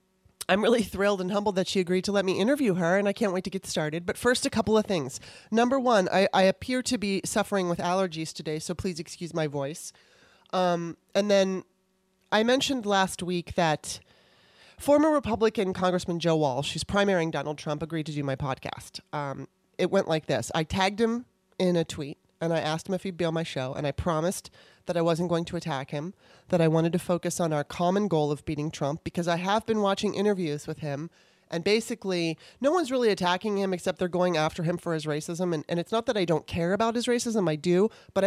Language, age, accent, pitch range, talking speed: English, 30-49, American, 165-200 Hz, 225 wpm